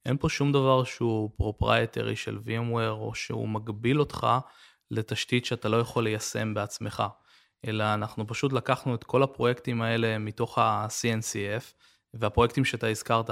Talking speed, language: 140 wpm, Hebrew